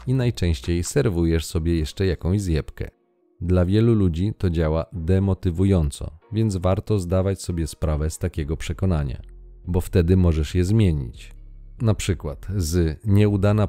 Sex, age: male, 40-59